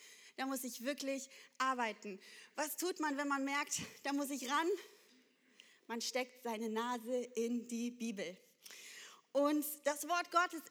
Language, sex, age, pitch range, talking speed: German, female, 20-39, 255-345 Hz, 145 wpm